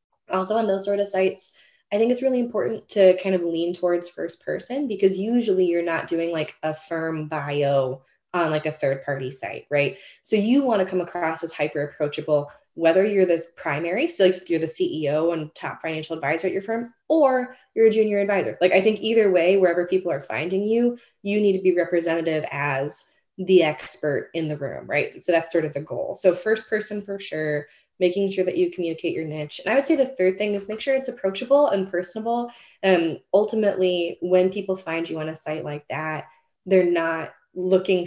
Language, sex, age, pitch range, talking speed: English, female, 20-39, 160-210 Hz, 210 wpm